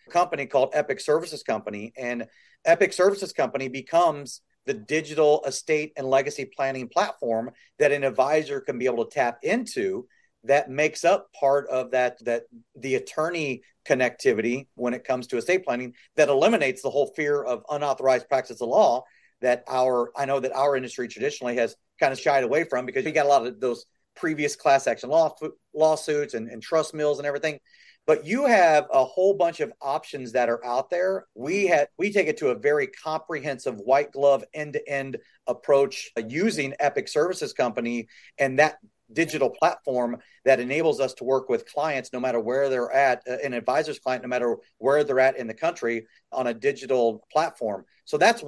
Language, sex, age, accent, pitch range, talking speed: English, male, 40-59, American, 125-155 Hz, 180 wpm